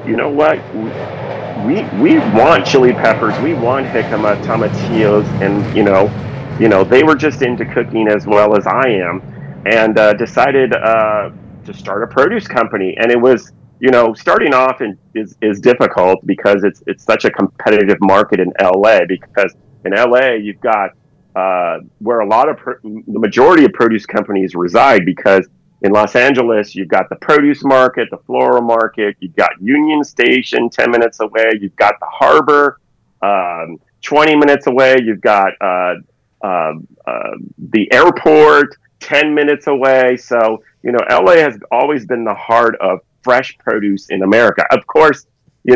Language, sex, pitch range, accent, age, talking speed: English, male, 105-130 Hz, American, 40-59, 165 wpm